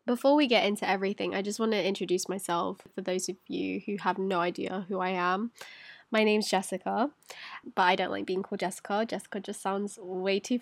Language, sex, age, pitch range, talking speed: English, female, 10-29, 190-240 Hz, 210 wpm